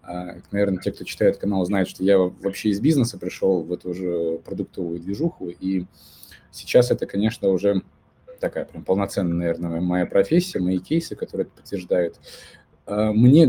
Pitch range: 90-115 Hz